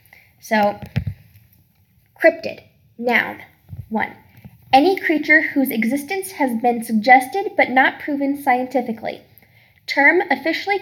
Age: 10-29